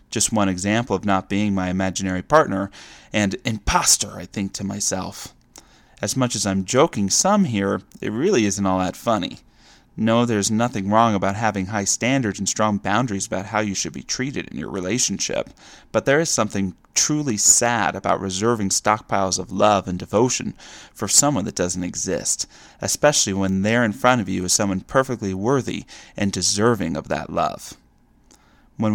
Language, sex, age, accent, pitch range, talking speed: English, male, 30-49, American, 95-115 Hz, 170 wpm